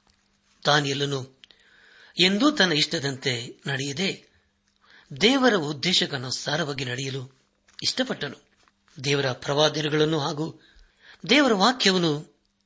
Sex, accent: male, native